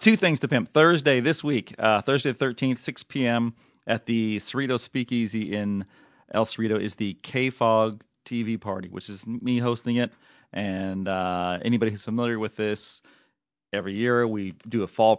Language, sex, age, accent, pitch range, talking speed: English, male, 30-49, American, 100-120 Hz, 170 wpm